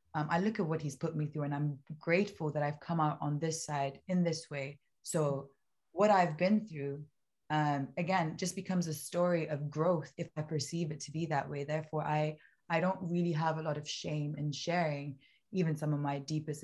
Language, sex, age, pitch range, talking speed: English, female, 20-39, 145-165 Hz, 215 wpm